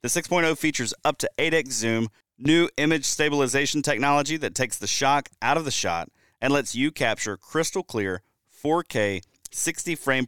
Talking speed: 165 wpm